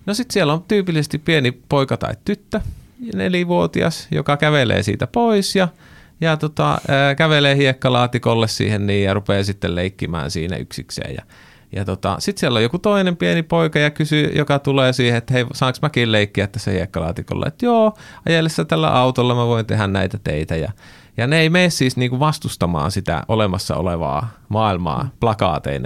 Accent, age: native, 30-49